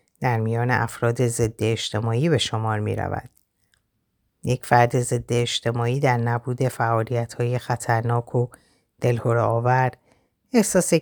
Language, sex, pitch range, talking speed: Persian, female, 115-145 Hz, 110 wpm